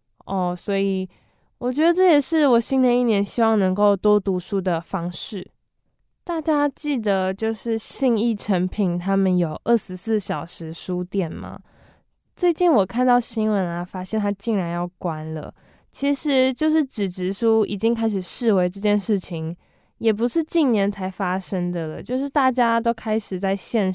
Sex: female